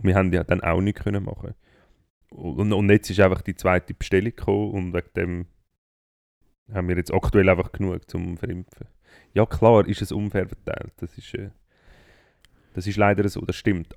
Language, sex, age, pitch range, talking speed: German, male, 30-49, 90-105 Hz, 180 wpm